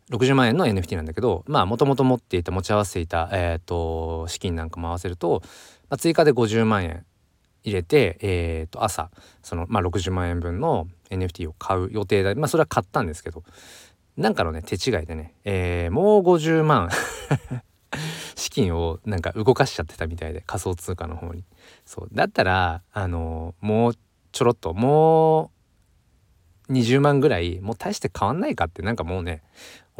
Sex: male